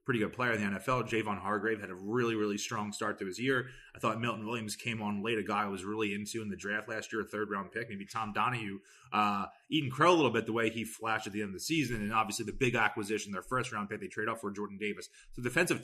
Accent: American